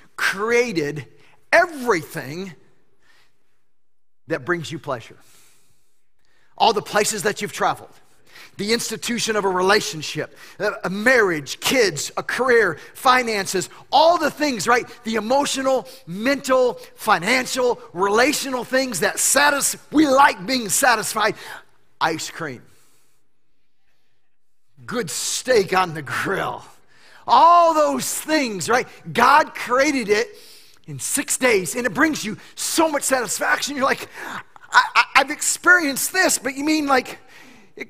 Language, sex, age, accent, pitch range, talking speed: English, male, 40-59, American, 180-275 Hz, 120 wpm